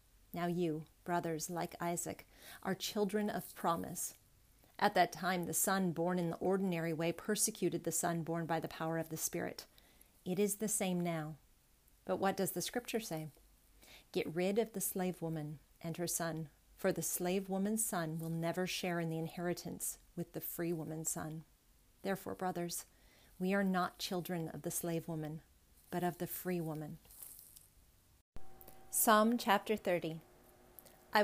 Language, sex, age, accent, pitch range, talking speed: English, female, 40-59, American, 165-190 Hz, 160 wpm